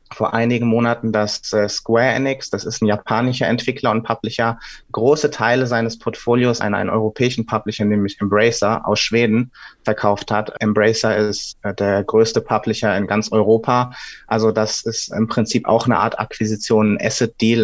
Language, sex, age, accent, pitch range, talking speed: German, male, 30-49, German, 105-115 Hz, 155 wpm